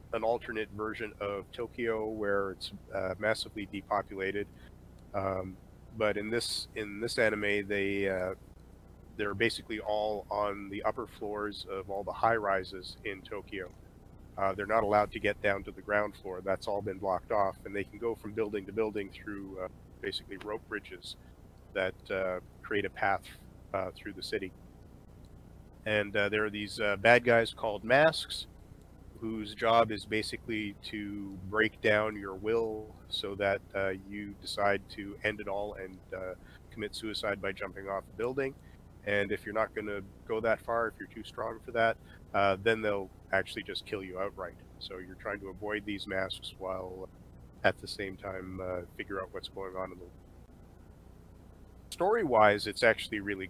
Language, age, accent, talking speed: English, 30-49, American, 170 wpm